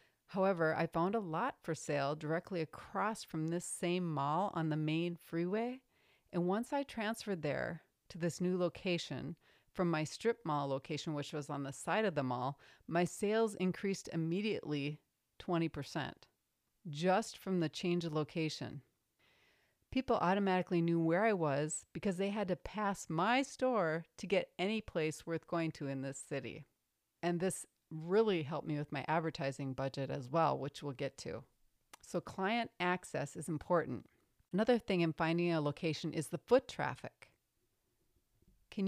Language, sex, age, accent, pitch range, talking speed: English, female, 40-59, American, 155-195 Hz, 160 wpm